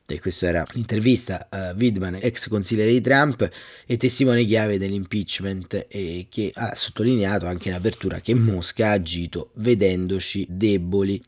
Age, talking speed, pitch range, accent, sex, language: 30-49, 140 wpm, 95-120 Hz, native, male, Italian